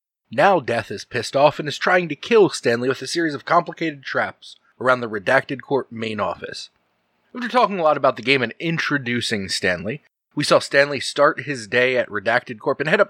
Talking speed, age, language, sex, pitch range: 205 wpm, 20-39, English, male, 115-170 Hz